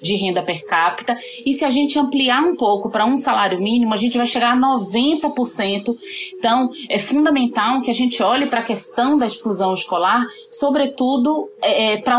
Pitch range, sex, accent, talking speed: 200-255 Hz, female, Brazilian, 175 wpm